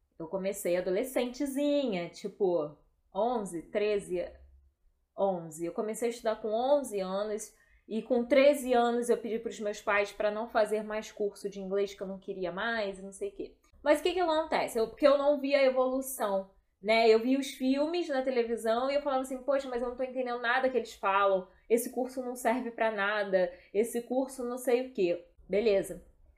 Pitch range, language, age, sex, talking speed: 205-275 Hz, Portuguese, 10-29, female, 200 wpm